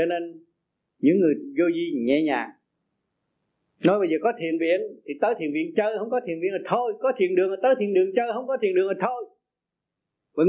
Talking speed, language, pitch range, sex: 230 wpm, Vietnamese, 190-285 Hz, male